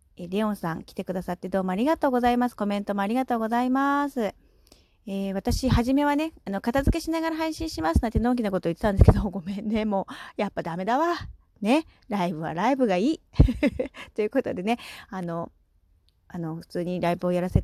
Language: Japanese